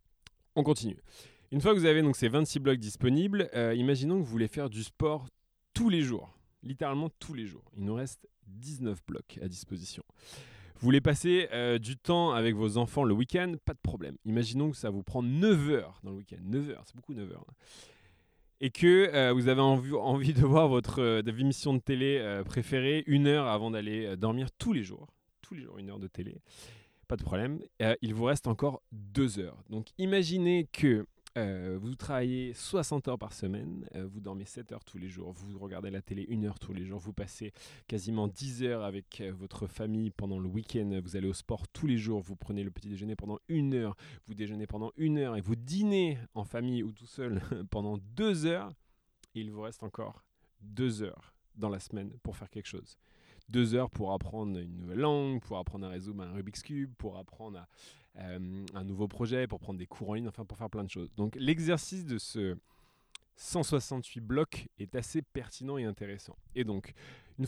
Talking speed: 210 wpm